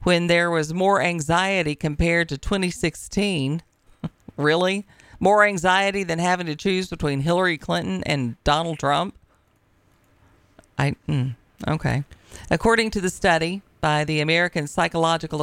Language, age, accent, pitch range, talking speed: English, 40-59, American, 140-185 Hz, 125 wpm